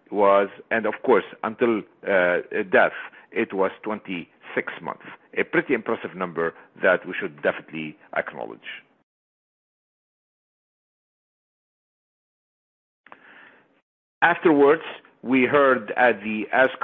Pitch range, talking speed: 100-130 Hz, 95 wpm